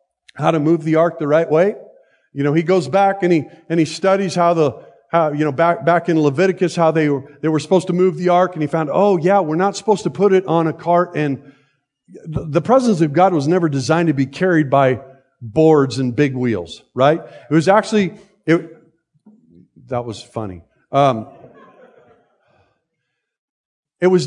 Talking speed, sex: 195 wpm, male